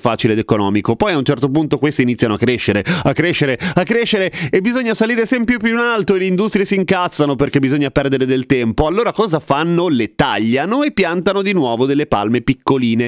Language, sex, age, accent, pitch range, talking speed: Italian, male, 30-49, native, 125-205 Hz, 205 wpm